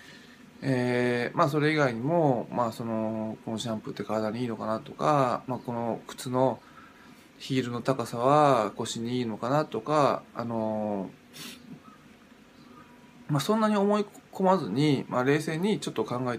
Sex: male